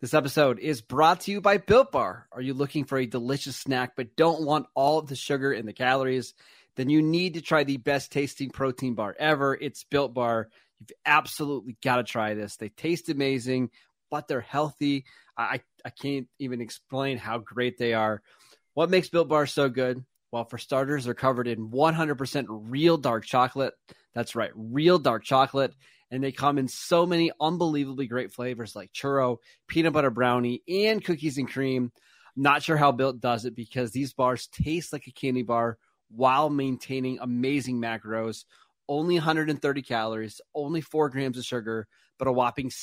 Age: 20-39